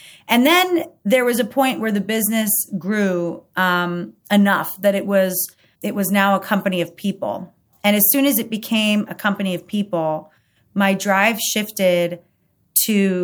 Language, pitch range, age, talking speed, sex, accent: English, 175-205 Hz, 30-49, 165 wpm, female, American